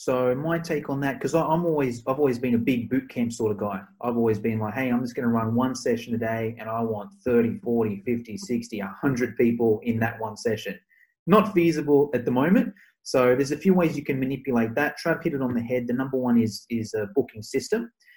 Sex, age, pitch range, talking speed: male, 30-49, 120-170 Hz, 240 wpm